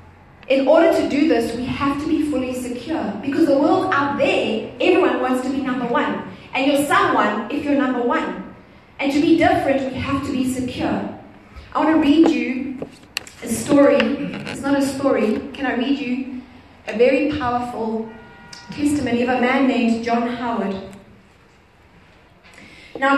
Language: English